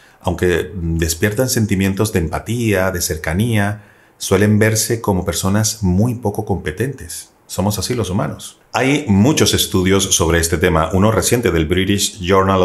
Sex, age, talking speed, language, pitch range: male, 40-59, 140 wpm, Spanish, 90-115 Hz